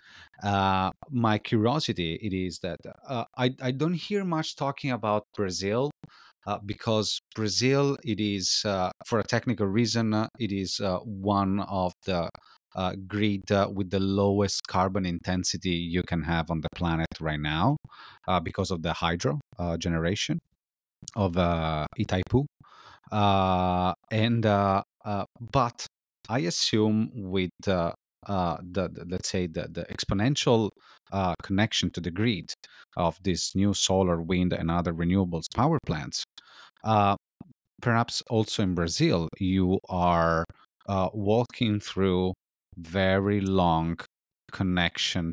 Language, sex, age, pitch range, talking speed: English, male, 30-49, 90-110 Hz, 135 wpm